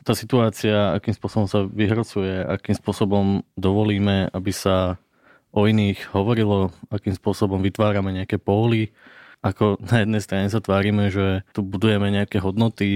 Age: 20-39